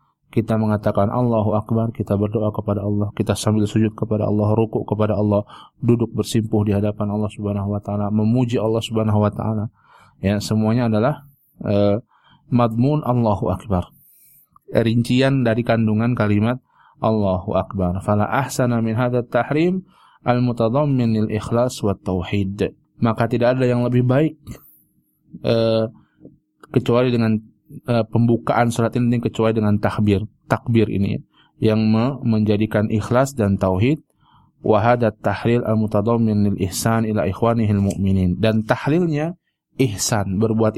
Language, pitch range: Indonesian, 105-120 Hz